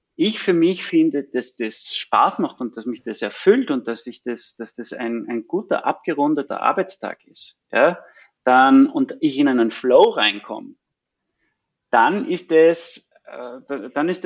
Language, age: German, 30-49